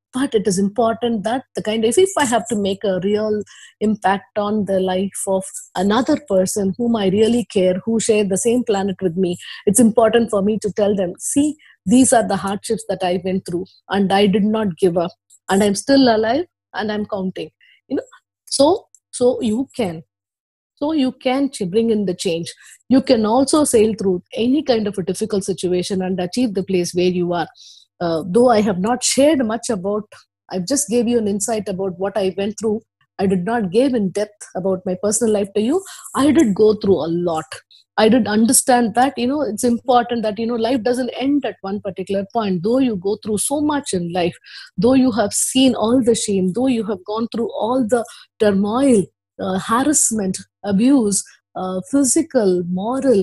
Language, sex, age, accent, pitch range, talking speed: English, female, 20-39, Indian, 195-245 Hz, 200 wpm